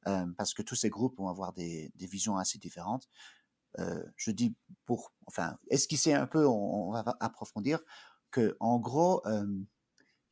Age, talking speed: 50-69, 170 wpm